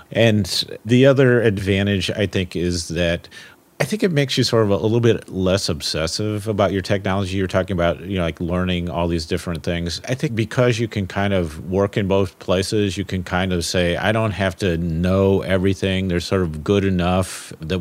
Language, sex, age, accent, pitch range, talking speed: English, male, 40-59, American, 90-110 Hz, 210 wpm